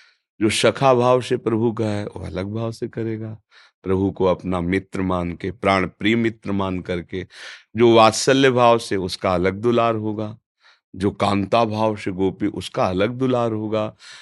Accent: native